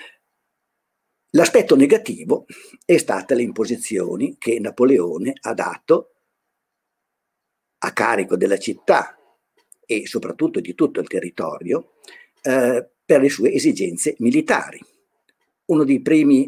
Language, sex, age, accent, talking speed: Italian, male, 50-69, native, 105 wpm